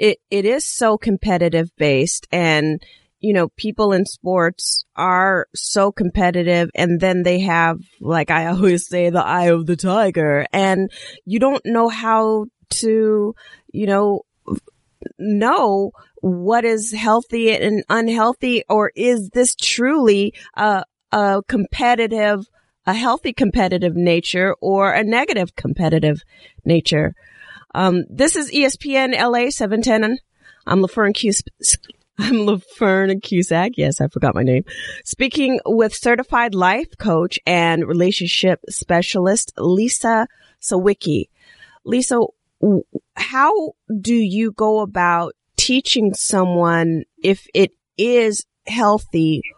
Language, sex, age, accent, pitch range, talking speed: English, female, 30-49, American, 175-225 Hz, 120 wpm